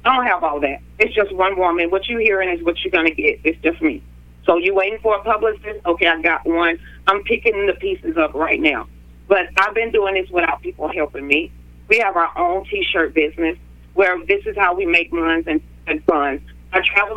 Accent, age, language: American, 40-59, English